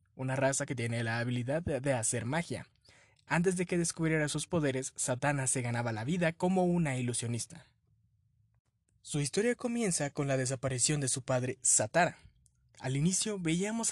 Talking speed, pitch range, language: 155 wpm, 125-175 Hz, Spanish